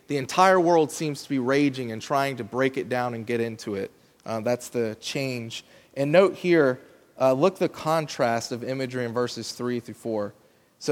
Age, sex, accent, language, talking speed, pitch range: 20-39, male, American, English, 200 wpm, 120-155 Hz